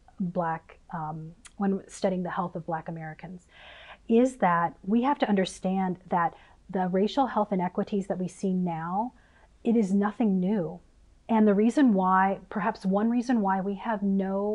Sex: female